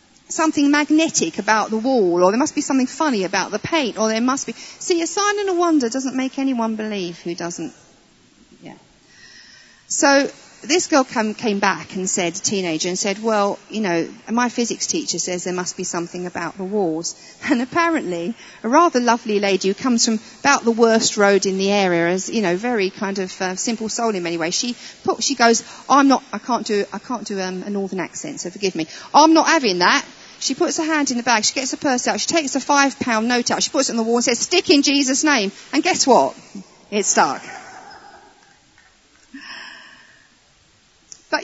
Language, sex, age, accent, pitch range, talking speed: English, female, 40-59, British, 195-280 Hz, 205 wpm